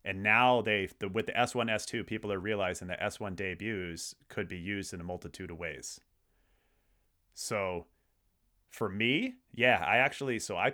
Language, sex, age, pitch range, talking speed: English, male, 30-49, 90-120 Hz, 170 wpm